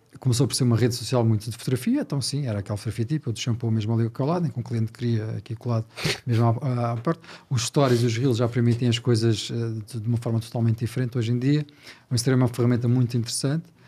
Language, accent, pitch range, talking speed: Portuguese, Portuguese, 115-130 Hz, 270 wpm